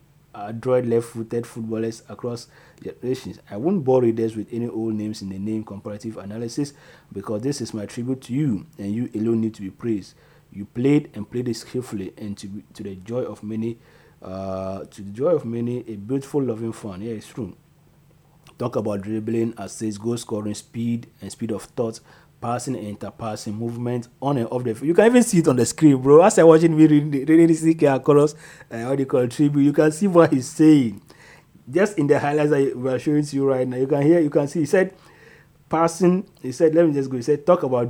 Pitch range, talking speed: 110-150 Hz, 230 wpm